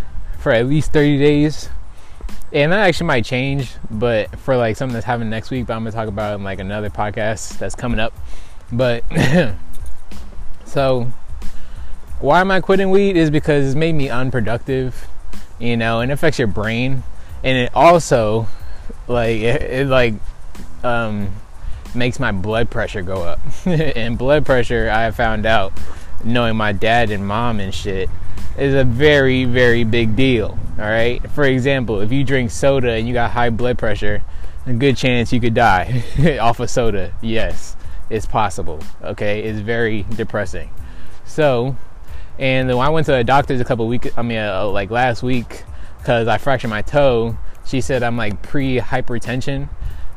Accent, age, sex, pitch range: American, 20-39, male, 100-130 Hz